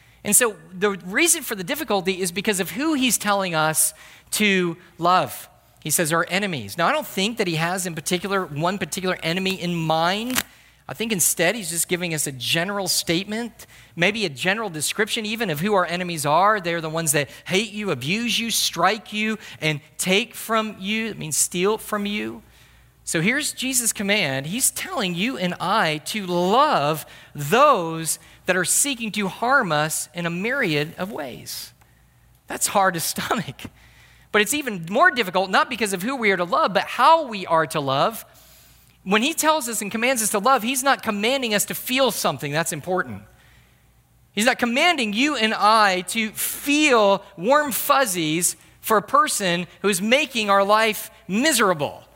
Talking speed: 180 wpm